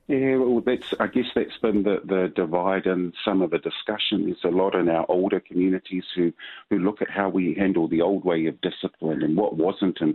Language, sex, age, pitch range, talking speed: English, male, 50-69, 85-100 Hz, 225 wpm